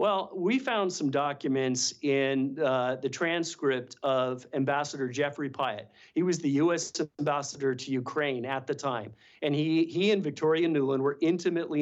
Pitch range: 130-165 Hz